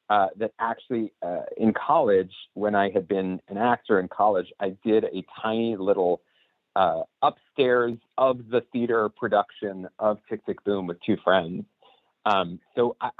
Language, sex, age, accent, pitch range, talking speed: English, male, 40-59, American, 90-115 Hz, 160 wpm